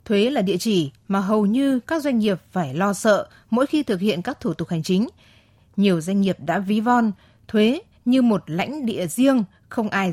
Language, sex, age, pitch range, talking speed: Vietnamese, female, 20-39, 185-240 Hz, 215 wpm